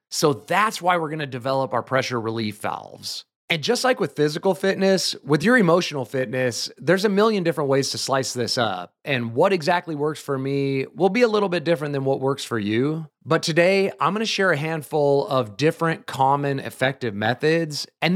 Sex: male